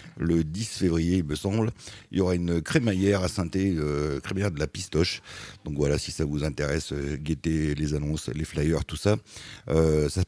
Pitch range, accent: 80-100 Hz, French